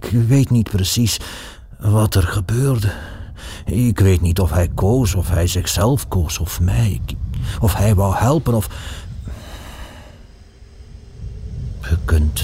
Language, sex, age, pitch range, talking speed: Dutch, male, 50-69, 85-105 Hz, 125 wpm